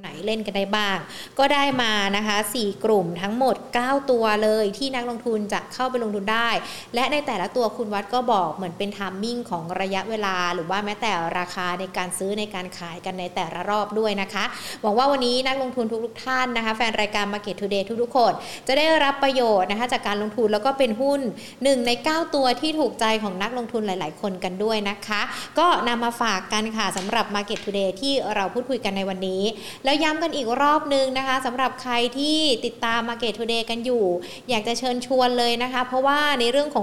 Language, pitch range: Thai, 205-255 Hz